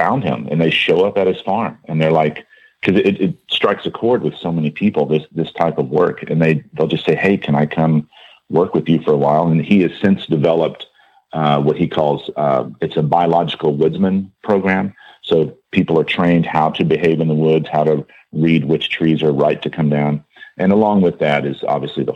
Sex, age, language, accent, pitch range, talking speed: male, 40-59, English, American, 75-90 Hz, 225 wpm